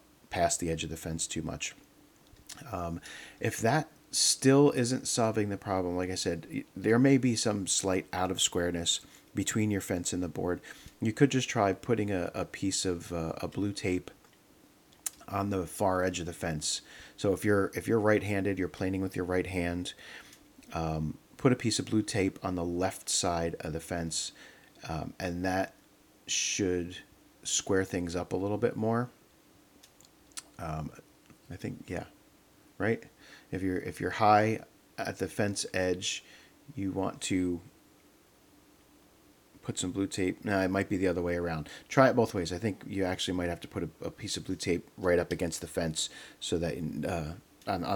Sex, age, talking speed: male, 40-59, 185 wpm